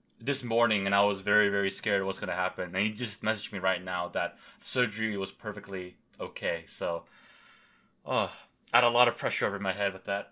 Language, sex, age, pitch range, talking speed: English, male, 20-39, 100-130 Hz, 220 wpm